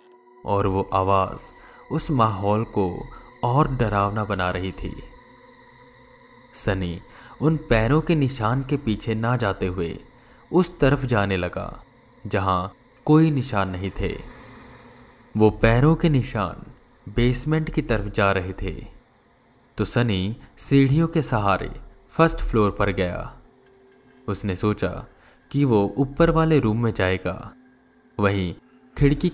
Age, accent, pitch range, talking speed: 20-39, native, 95-130 Hz, 125 wpm